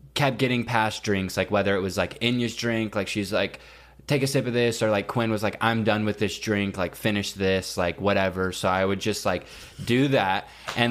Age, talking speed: 20-39, 230 wpm